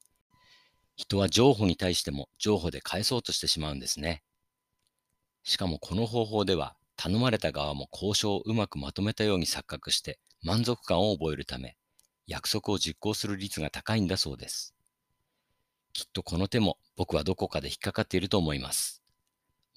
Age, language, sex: 50-69, Japanese, male